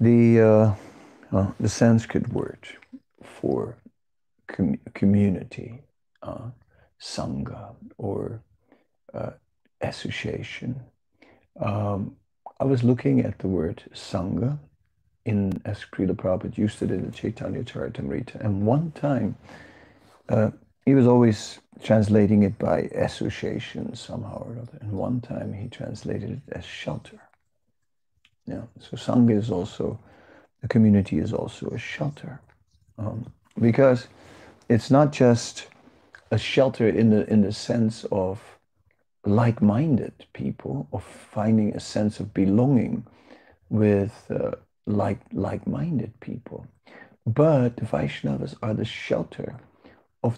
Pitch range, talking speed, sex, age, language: 100-120 Hz, 115 wpm, male, 50-69, English